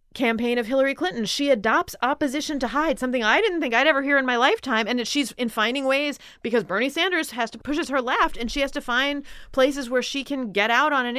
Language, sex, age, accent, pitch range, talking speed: English, female, 30-49, American, 240-300 Hz, 240 wpm